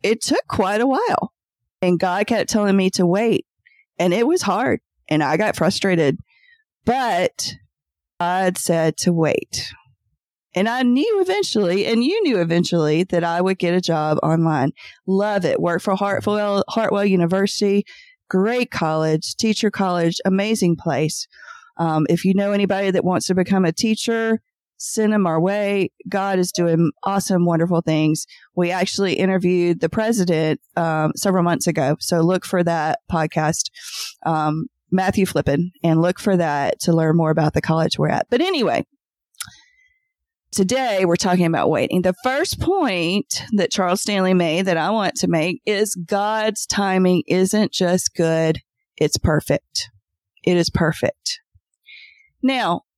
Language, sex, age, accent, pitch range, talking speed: English, female, 40-59, American, 165-205 Hz, 150 wpm